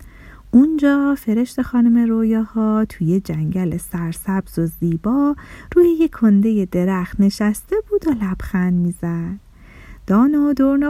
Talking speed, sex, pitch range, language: 120 wpm, female, 185-275 Hz, Persian